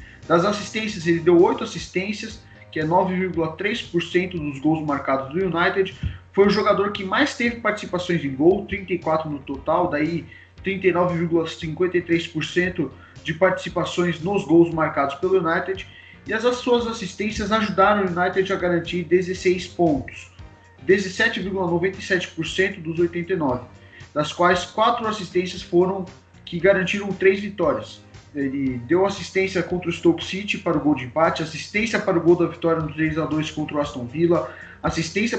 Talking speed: 140 wpm